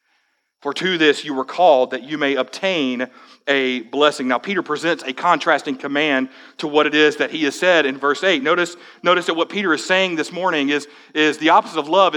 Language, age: English, 40-59